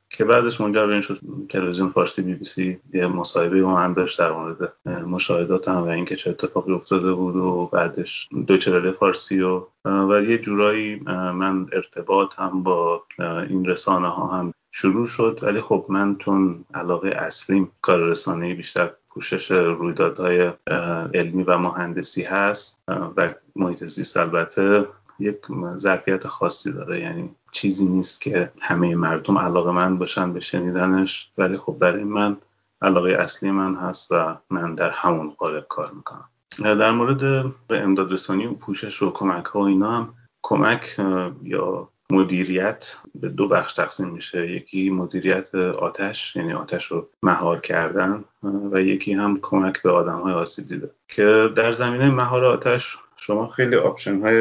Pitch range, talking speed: 90-100 Hz, 145 wpm